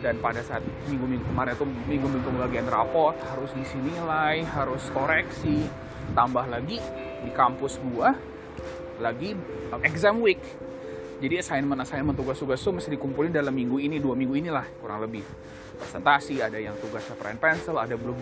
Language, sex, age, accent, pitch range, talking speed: Indonesian, male, 20-39, native, 120-145 Hz, 140 wpm